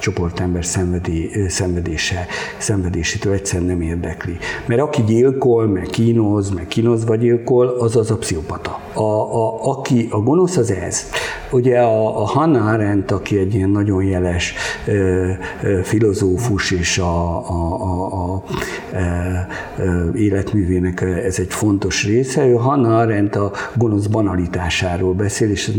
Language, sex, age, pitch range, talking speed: Hungarian, male, 50-69, 95-115 Hz, 140 wpm